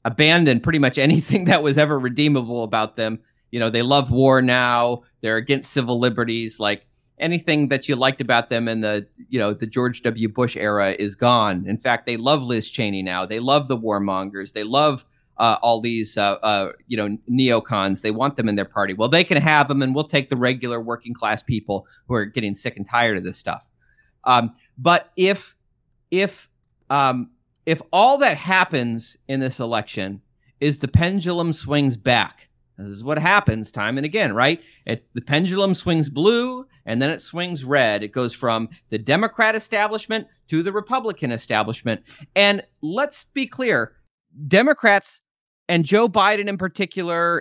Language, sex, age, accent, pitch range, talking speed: English, male, 30-49, American, 115-160 Hz, 180 wpm